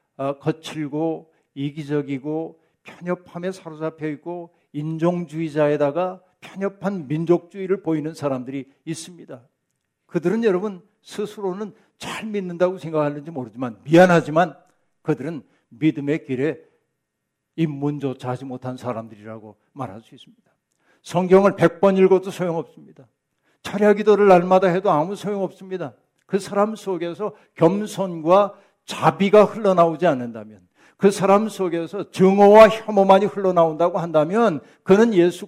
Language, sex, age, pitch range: Korean, male, 60-79, 145-190 Hz